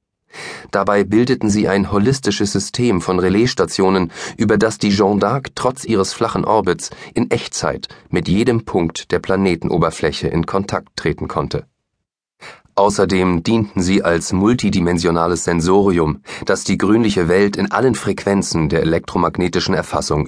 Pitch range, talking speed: 90-110 Hz, 130 wpm